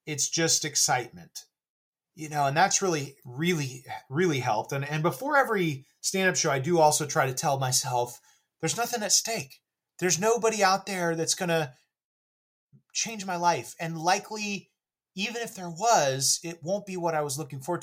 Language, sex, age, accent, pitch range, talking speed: English, male, 30-49, American, 140-180 Hz, 175 wpm